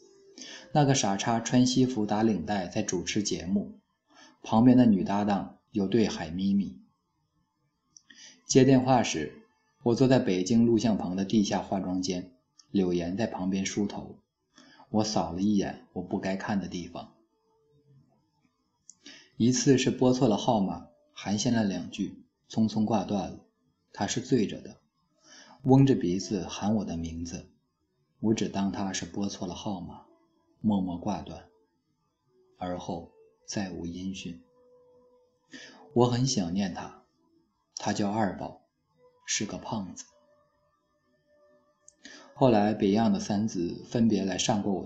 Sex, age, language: male, 20-39, Chinese